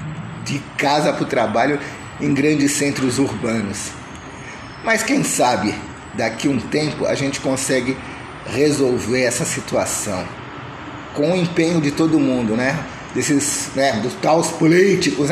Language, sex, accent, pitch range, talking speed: Portuguese, male, Brazilian, 130-170 Hz, 125 wpm